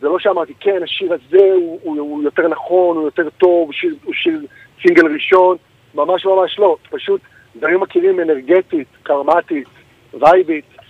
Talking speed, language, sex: 160 wpm, Hebrew, male